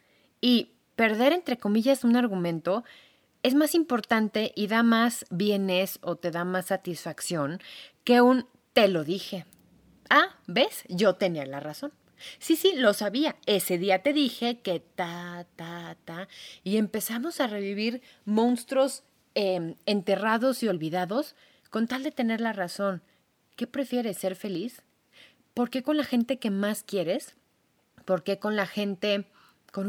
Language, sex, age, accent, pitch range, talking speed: Spanish, female, 30-49, Mexican, 175-235 Hz, 150 wpm